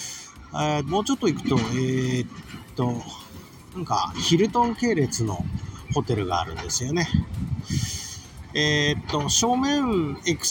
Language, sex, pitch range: Japanese, male, 105-170 Hz